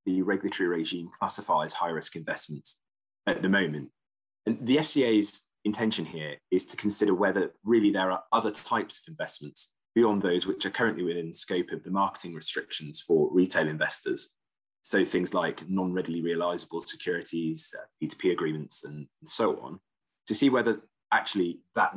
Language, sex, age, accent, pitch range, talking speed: English, male, 20-39, British, 85-110 Hz, 155 wpm